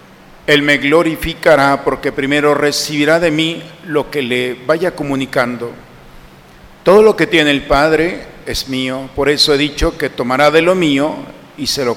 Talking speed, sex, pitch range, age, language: 165 wpm, male, 130-155 Hz, 50-69, Spanish